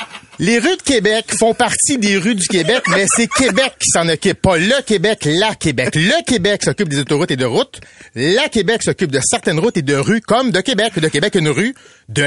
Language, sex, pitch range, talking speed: French, male, 185-245 Hz, 225 wpm